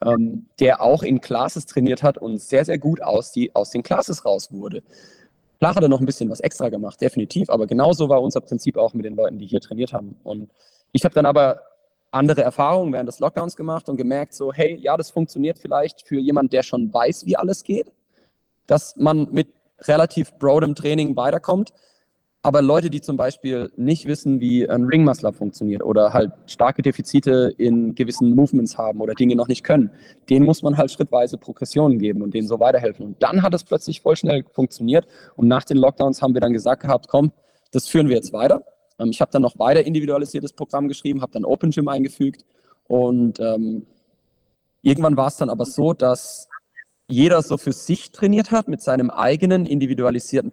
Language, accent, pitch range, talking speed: German, German, 125-155 Hz, 195 wpm